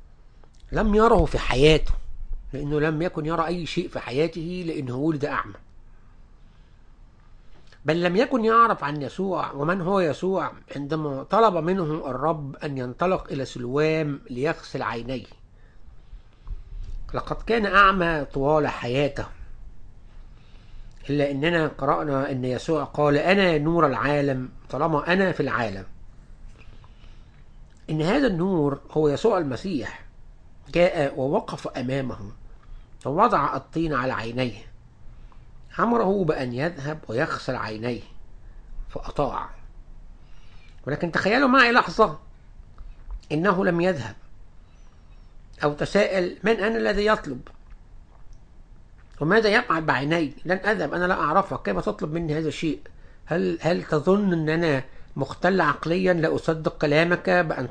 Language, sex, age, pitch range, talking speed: English, male, 60-79, 120-175 Hz, 110 wpm